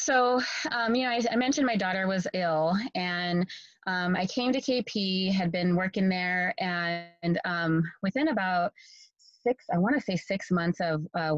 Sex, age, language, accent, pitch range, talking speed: female, 20-39, English, American, 165-190 Hz, 185 wpm